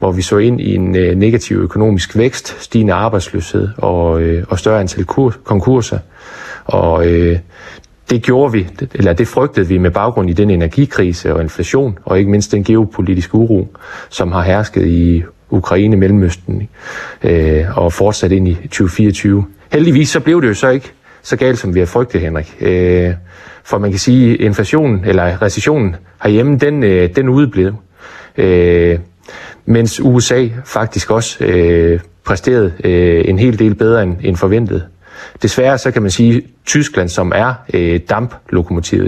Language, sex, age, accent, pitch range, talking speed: Danish, male, 30-49, native, 90-115 Hz, 160 wpm